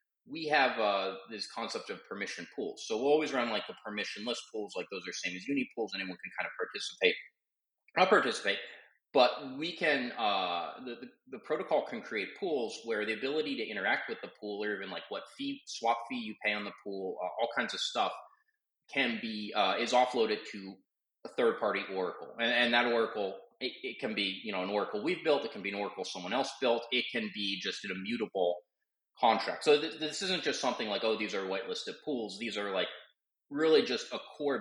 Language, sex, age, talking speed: English, male, 30-49, 215 wpm